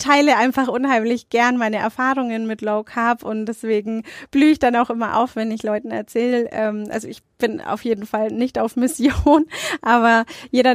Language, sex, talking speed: German, female, 180 wpm